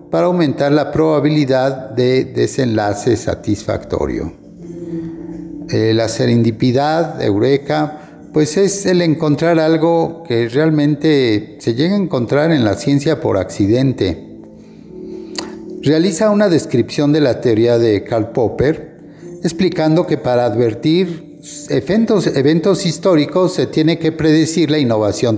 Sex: male